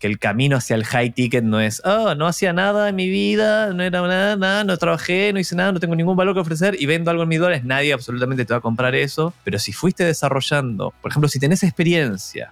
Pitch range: 125-185 Hz